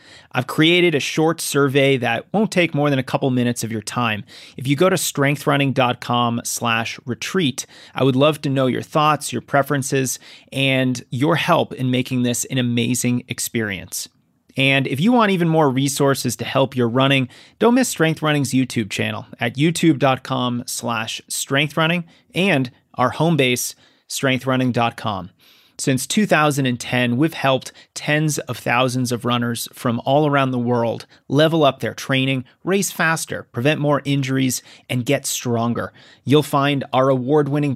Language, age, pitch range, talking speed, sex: English, 30-49, 120-145 Hz, 150 wpm, male